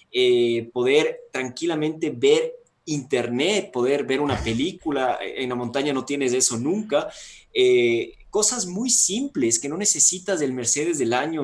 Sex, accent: male, Mexican